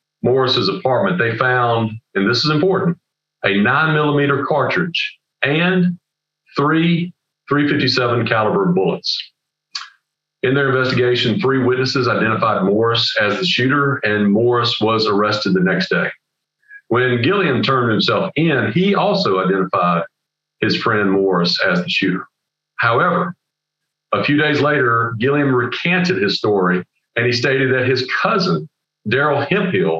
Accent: American